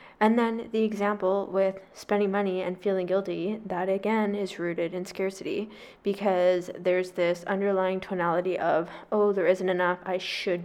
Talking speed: 160 wpm